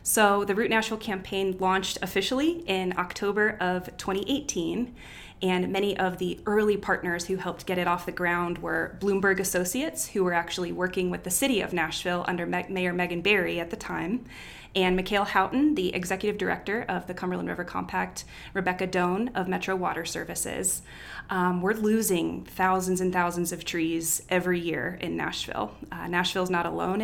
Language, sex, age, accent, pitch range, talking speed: English, female, 20-39, American, 175-200 Hz, 170 wpm